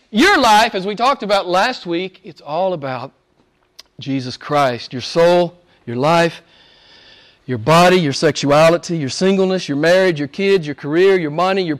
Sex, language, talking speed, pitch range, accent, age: male, English, 165 wpm, 150-205 Hz, American, 40-59